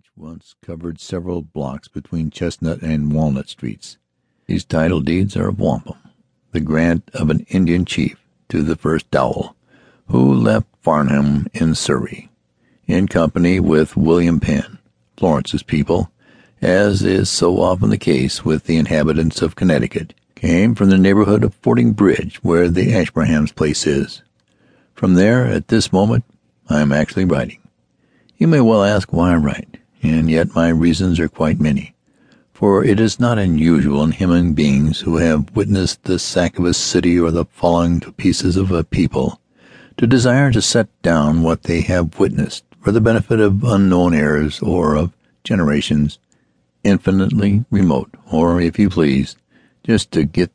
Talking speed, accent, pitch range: 160 wpm, American, 75-95 Hz